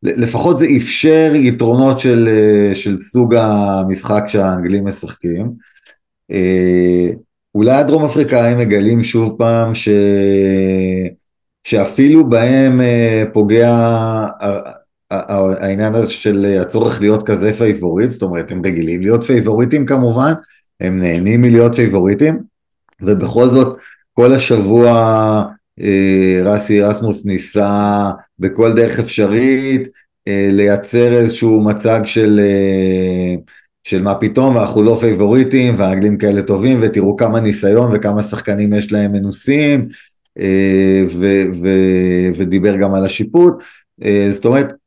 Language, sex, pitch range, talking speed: Hebrew, male, 100-115 Hz, 105 wpm